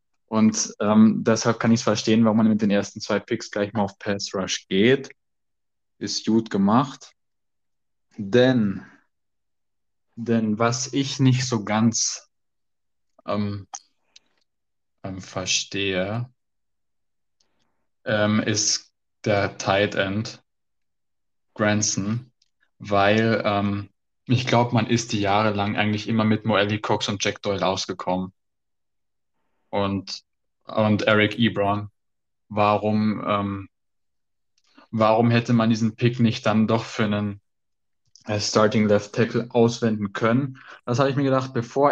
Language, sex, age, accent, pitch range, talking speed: Danish, male, 20-39, German, 100-115 Hz, 120 wpm